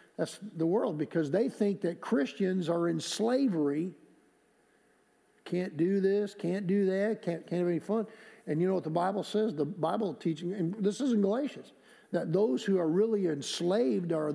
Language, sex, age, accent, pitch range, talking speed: English, male, 50-69, American, 150-195 Hz, 185 wpm